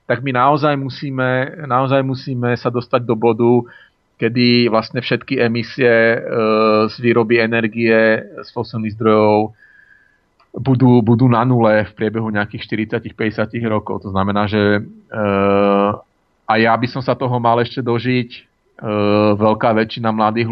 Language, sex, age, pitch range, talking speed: Slovak, male, 40-59, 105-120 Hz, 135 wpm